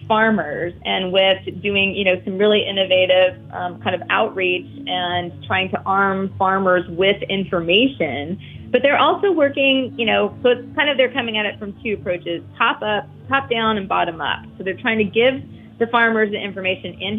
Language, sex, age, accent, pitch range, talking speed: English, female, 30-49, American, 185-225 Hz, 190 wpm